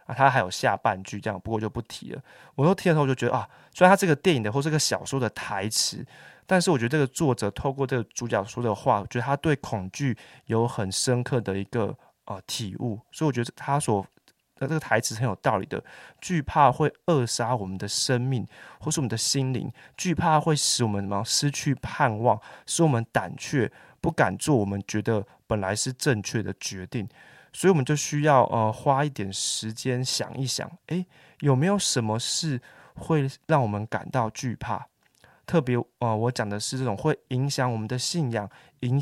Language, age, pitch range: Chinese, 20-39, 110-140 Hz